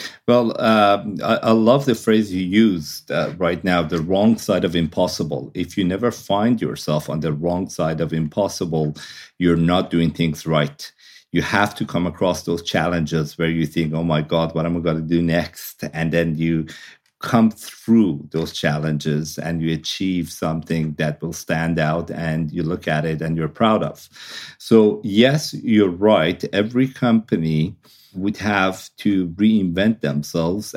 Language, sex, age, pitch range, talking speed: English, male, 50-69, 80-100 Hz, 170 wpm